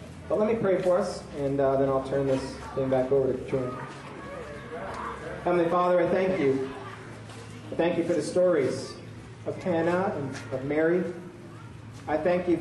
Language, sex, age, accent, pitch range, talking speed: English, male, 40-59, American, 135-170 Hz, 175 wpm